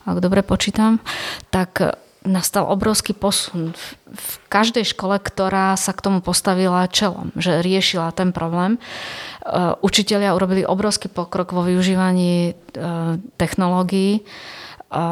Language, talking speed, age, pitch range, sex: Slovak, 105 wpm, 30-49, 170-190 Hz, female